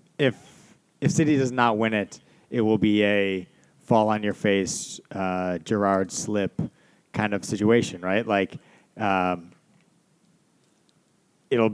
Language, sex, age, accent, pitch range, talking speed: English, male, 30-49, American, 100-125 Hz, 120 wpm